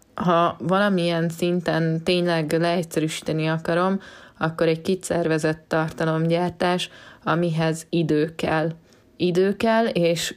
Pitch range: 155-175 Hz